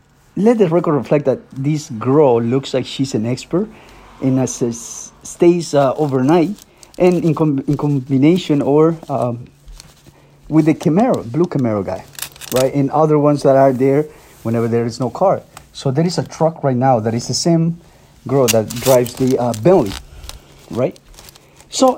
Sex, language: male, English